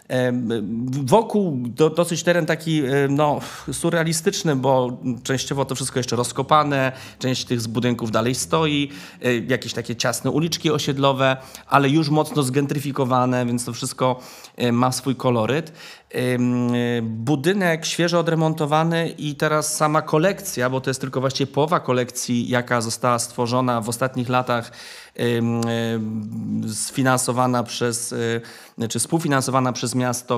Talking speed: 115 wpm